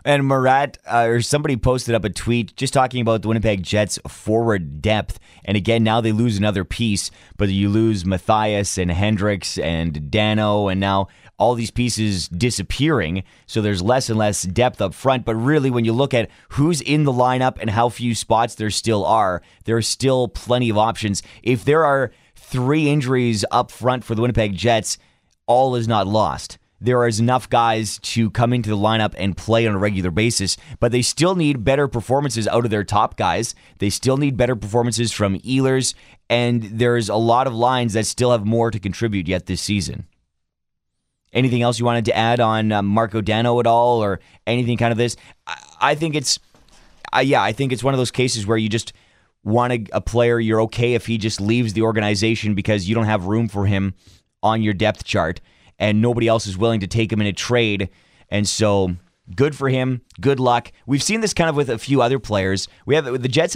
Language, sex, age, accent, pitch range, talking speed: English, male, 30-49, American, 105-125 Hz, 200 wpm